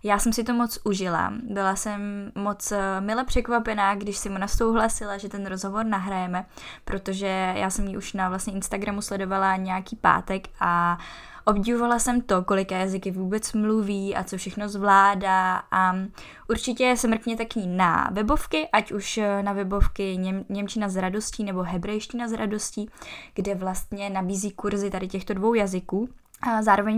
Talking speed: 155 wpm